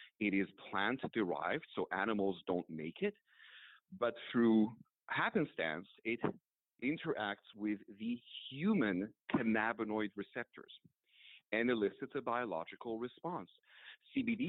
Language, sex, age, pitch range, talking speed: English, male, 40-59, 95-130 Hz, 100 wpm